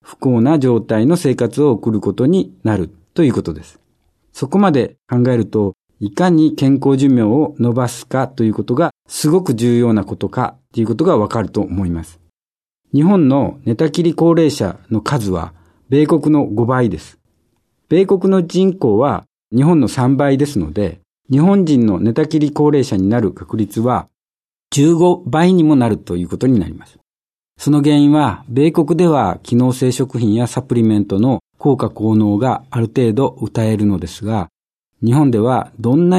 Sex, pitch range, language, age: male, 110-150 Hz, Japanese, 50-69